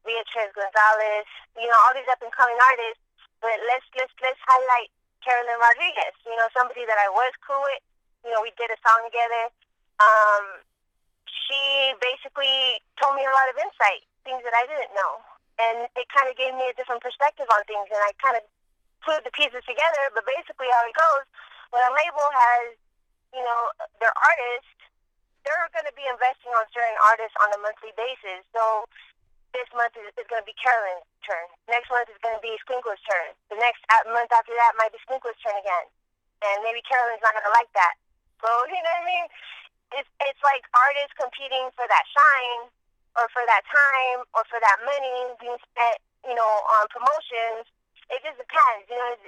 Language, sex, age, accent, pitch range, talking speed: English, female, 20-39, American, 220-260 Hz, 190 wpm